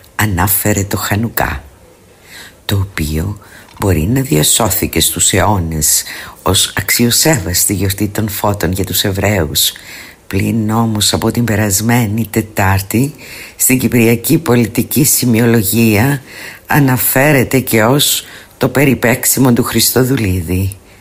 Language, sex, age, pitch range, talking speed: Greek, female, 50-69, 95-120 Hz, 100 wpm